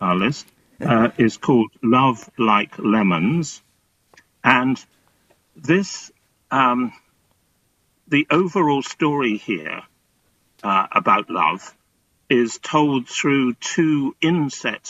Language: English